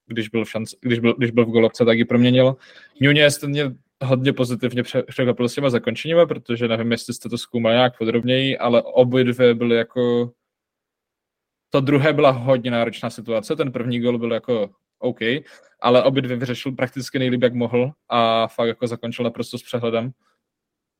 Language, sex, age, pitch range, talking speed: Czech, male, 20-39, 115-130 Hz, 170 wpm